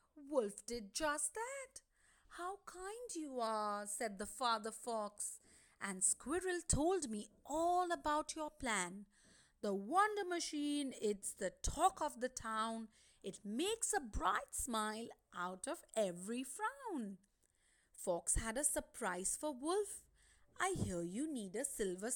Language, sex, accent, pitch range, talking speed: English, female, Indian, 220-330 Hz, 135 wpm